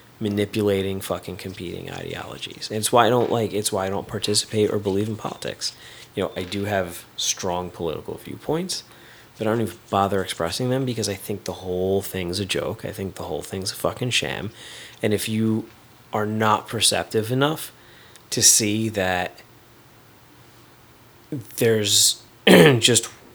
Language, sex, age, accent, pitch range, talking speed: English, male, 30-49, American, 100-125 Hz, 155 wpm